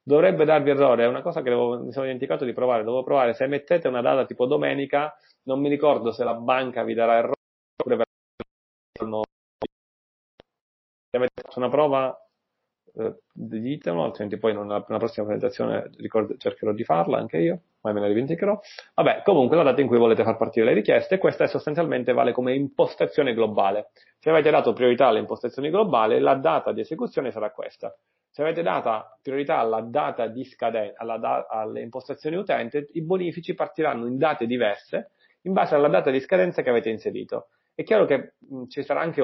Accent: native